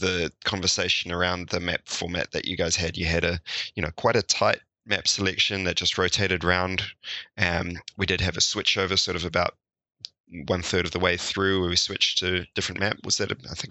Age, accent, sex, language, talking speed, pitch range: 20-39, Australian, male, English, 220 wpm, 90-100 Hz